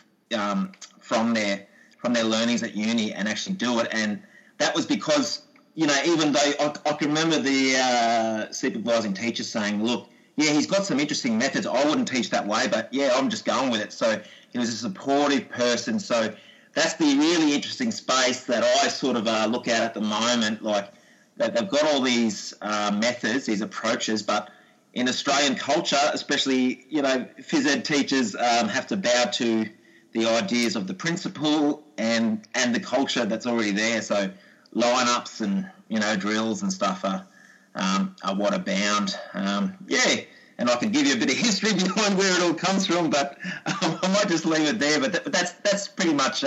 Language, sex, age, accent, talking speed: English, male, 30-49, Australian, 200 wpm